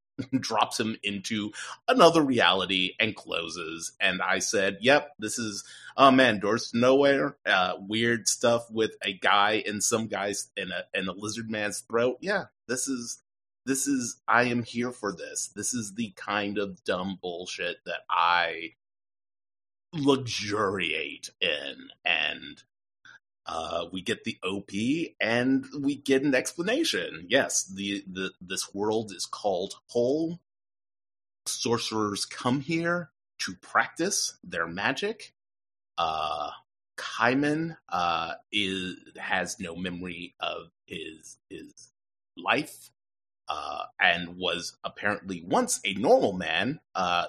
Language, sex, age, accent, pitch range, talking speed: English, male, 30-49, American, 95-125 Hz, 130 wpm